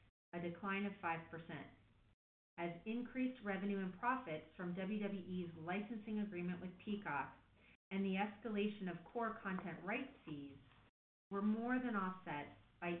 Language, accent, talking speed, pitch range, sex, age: English, American, 130 wpm, 155-205 Hz, female, 40-59